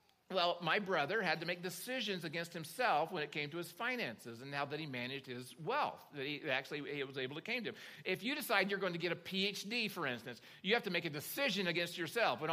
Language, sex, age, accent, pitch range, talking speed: English, male, 50-69, American, 155-205 Hz, 250 wpm